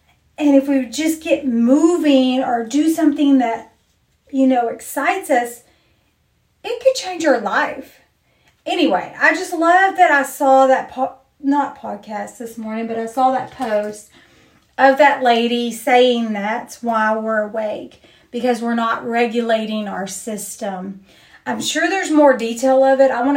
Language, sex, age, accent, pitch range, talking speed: English, female, 40-59, American, 225-275 Hz, 155 wpm